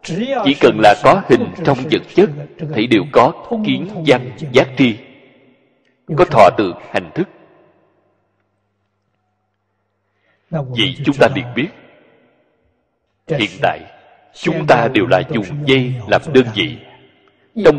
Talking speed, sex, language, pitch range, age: 125 wpm, male, Vietnamese, 105-155 Hz, 60-79